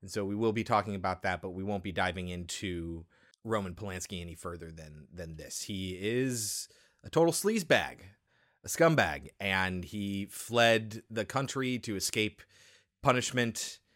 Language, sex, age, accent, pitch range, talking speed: English, male, 30-49, American, 95-125 Hz, 155 wpm